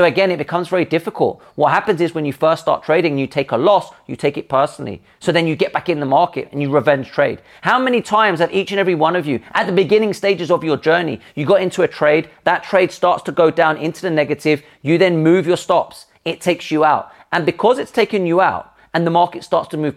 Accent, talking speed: British, 260 wpm